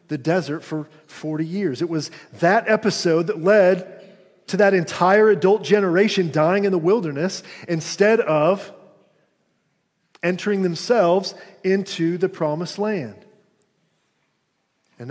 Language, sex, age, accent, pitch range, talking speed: English, male, 40-59, American, 160-205 Hz, 115 wpm